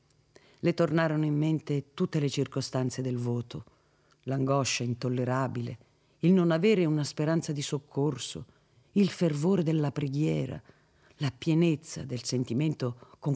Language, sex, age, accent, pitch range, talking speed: Italian, female, 50-69, native, 125-170 Hz, 120 wpm